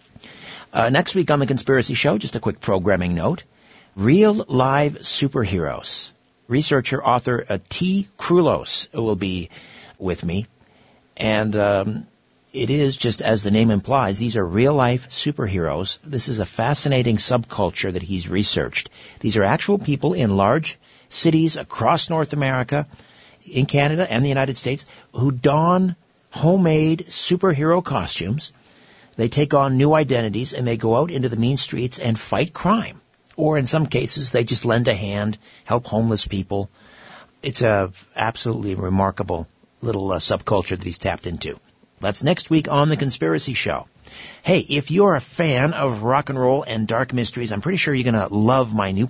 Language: English